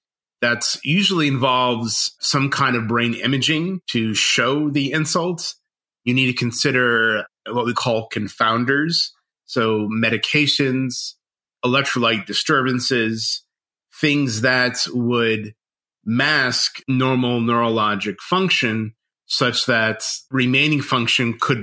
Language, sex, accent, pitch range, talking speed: English, male, American, 115-140 Hz, 100 wpm